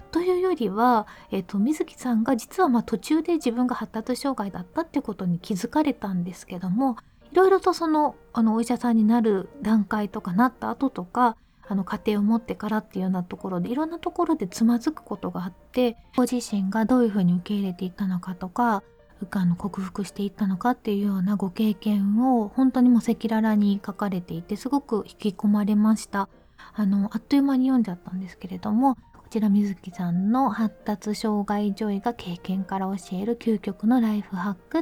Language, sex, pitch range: Japanese, female, 195-250 Hz